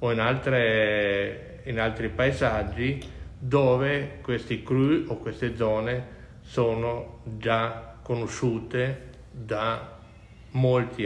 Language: Italian